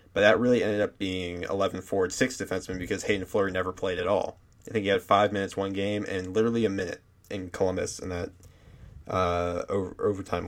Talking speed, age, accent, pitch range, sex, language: 205 wpm, 20-39, American, 95-110 Hz, male, English